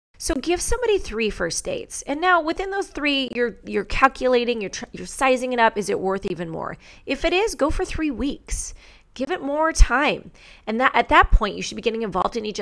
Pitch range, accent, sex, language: 200-280 Hz, American, female, English